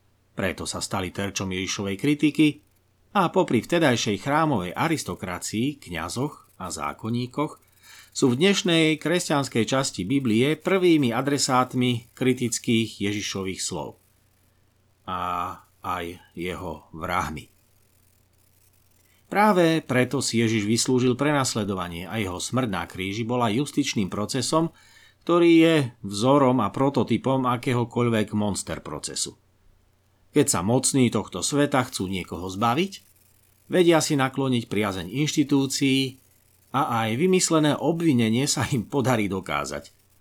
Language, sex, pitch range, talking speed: Slovak, male, 95-135 Hz, 105 wpm